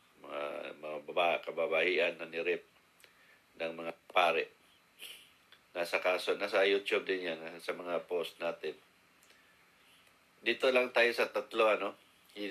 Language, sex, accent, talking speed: Filipino, male, native, 120 wpm